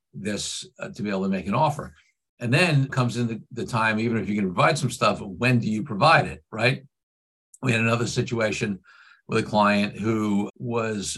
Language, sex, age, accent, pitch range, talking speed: English, male, 50-69, American, 100-120 Hz, 205 wpm